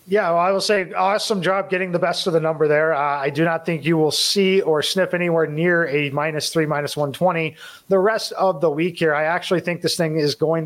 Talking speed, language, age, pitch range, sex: 250 wpm, English, 30-49, 150-190 Hz, male